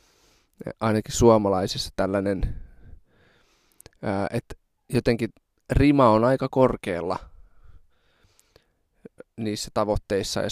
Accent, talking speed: native, 70 wpm